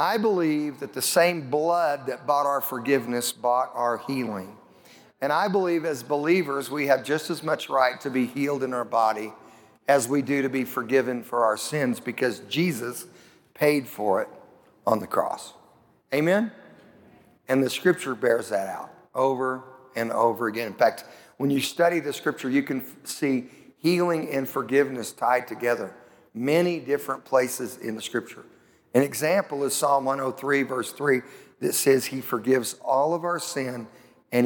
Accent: American